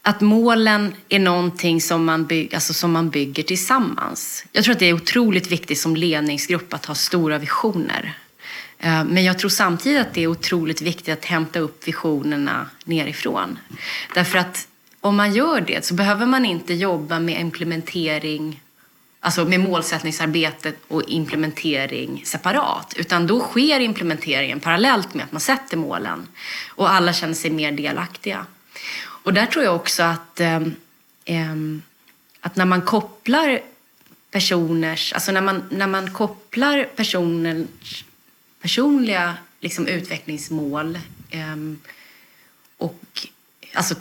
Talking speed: 130 wpm